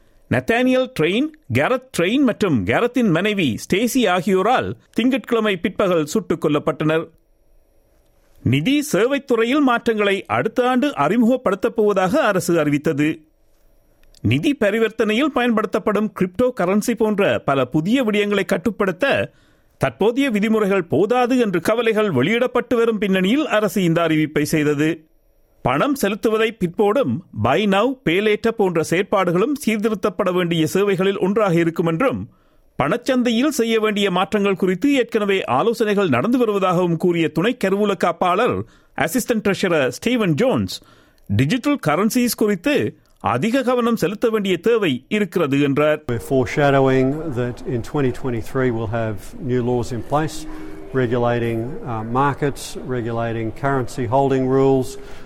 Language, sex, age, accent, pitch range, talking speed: Tamil, male, 50-69, native, 150-230 Hz, 90 wpm